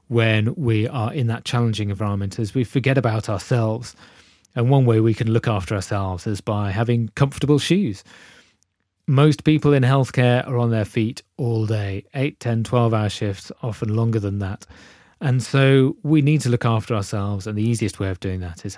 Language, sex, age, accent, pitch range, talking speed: English, male, 30-49, British, 100-130 Hz, 190 wpm